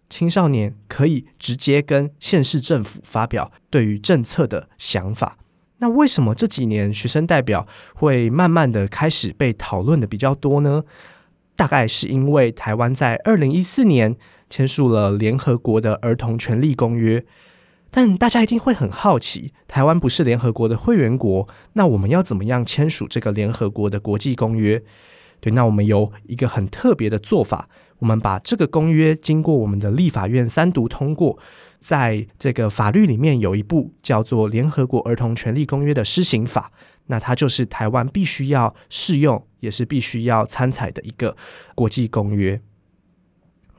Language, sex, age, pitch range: Chinese, male, 20-39, 110-150 Hz